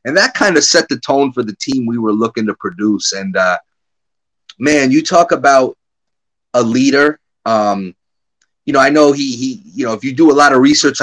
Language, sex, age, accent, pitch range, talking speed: English, male, 30-49, American, 115-160 Hz, 210 wpm